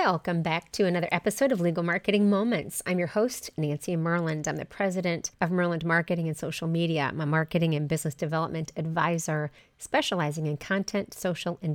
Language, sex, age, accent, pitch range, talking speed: English, female, 30-49, American, 160-195 Hz, 180 wpm